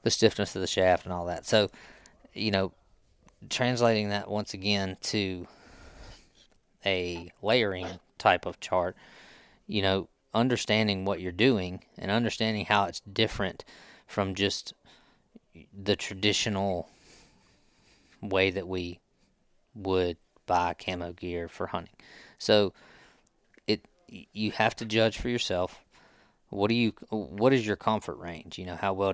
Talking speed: 135 wpm